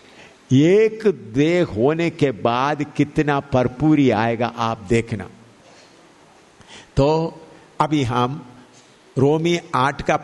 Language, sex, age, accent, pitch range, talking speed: English, male, 50-69, Indian, 120-155 Hz, 95 wpm